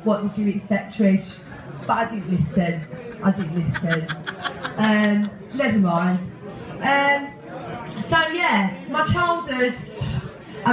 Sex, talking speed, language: female, 125 wpm, English